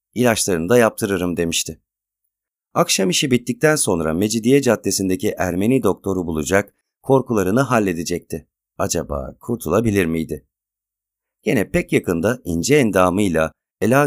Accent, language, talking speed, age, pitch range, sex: native, Turkish, 100 wpm, 40-59, 95-125 Hz, male